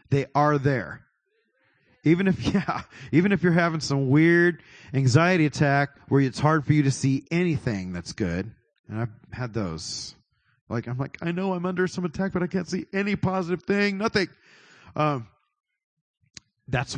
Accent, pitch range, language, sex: American, 120-160 Hz, English, male